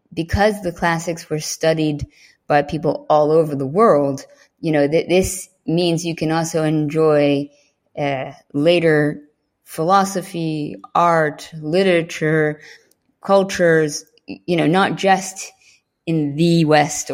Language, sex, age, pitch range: English, female, 20-39, 150-180 Hz